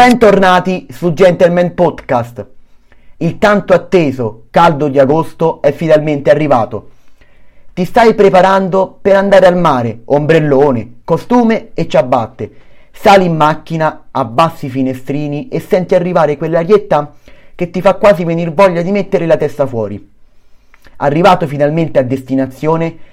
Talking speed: 125 wpm